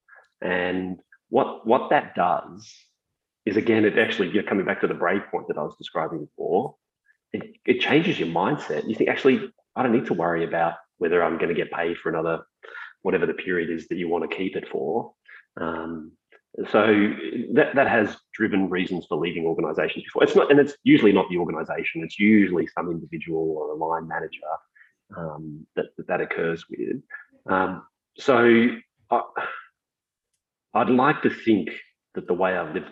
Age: 30-49